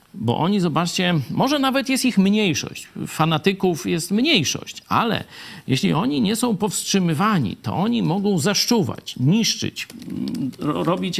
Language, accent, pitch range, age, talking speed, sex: Polish, native, 135-190 Hz, 50-69, 125 wpm, male